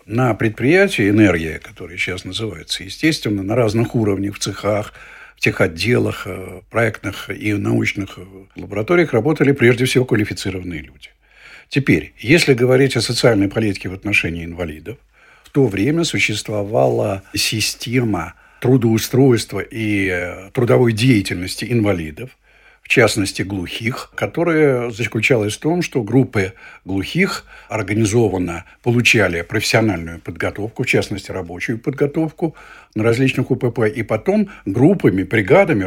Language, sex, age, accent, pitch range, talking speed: Russian, male, 60-79, native, 100-130 Hz, 115 wpm